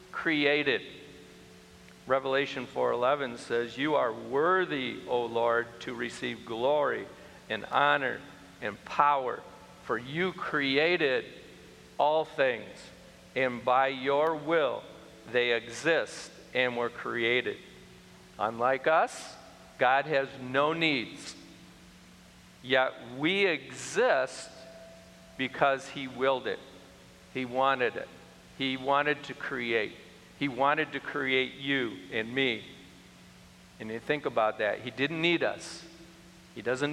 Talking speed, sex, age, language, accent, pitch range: 110 wpm, male, 50-69, English, American, 120-155 Hz